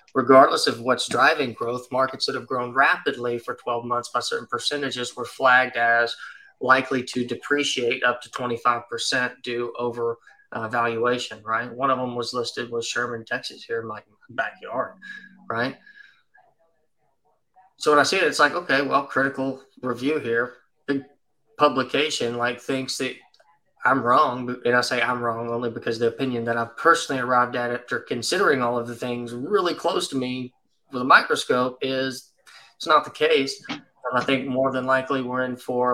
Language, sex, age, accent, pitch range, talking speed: English, male, 20-39, American, 120-135 Hz, 170 wpm